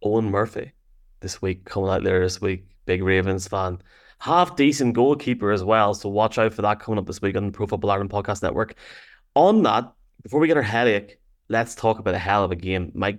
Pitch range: 100-120 Hz